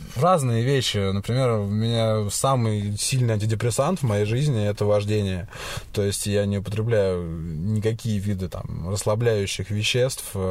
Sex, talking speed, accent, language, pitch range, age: male, 145 wpm, native, Russian, 100-115 Hz, 20-39